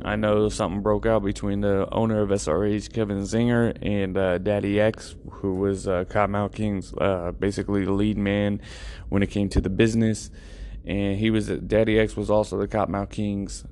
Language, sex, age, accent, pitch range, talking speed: English, male, 20-39, American, 100-110 Hz, 190 wpm